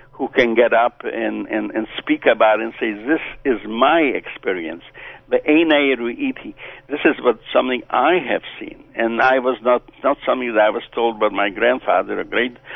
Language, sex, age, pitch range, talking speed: English, male, 60-79, 115-150 Hz, 185 wpm